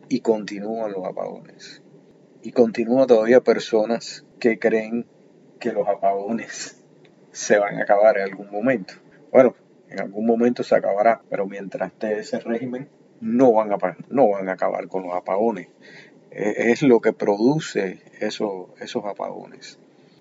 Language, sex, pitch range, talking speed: Spanish, male, 105-120 Hz, 135 wpm